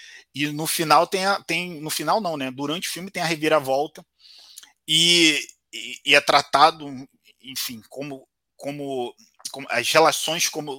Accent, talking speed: Brazilian, 155 wpm